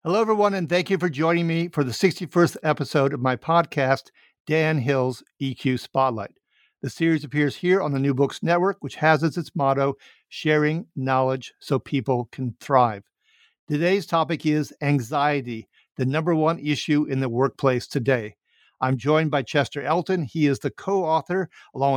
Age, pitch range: 50-69, 135-165 Hz